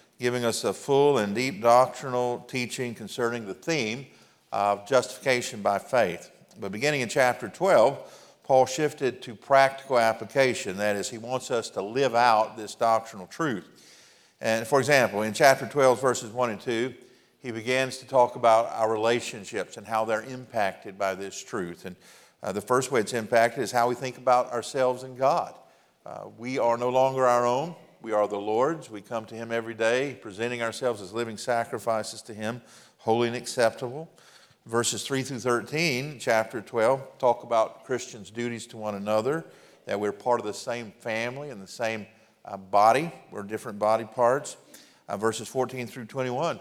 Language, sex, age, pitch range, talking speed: English, male, 50-69, 110-130 Hz, 175 wpm